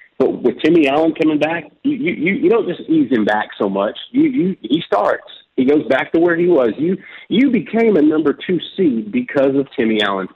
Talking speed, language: 220 wpm, English